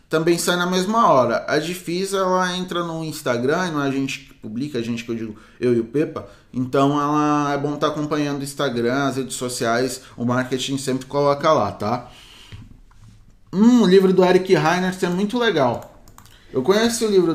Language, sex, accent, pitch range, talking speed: Portuguese, male, Brazilian, 120-155 Hz, 195 wpm